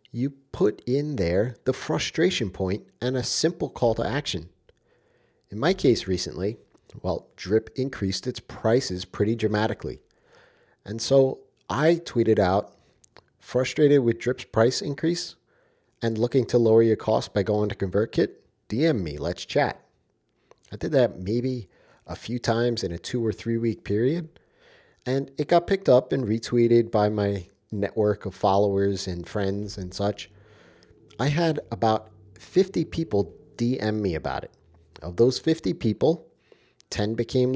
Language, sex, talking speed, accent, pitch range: English, male, 150 wpm, American, 100-130 Hz